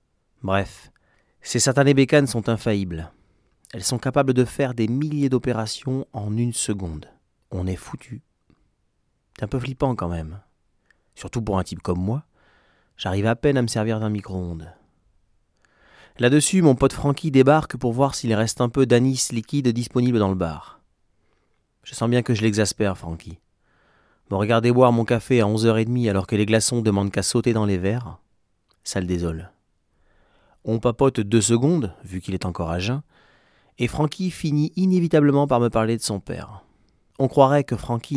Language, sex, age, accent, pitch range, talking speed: English, male, 30-49, French, 95-125 Hz, 170 wpm